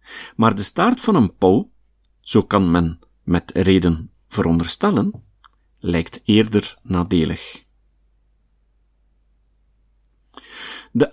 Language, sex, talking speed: Dutch, male, 85 wpm